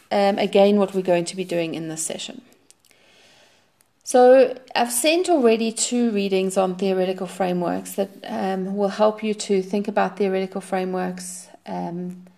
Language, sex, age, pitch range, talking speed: English, female, 30-49, 185-215 Hz, 150 wpm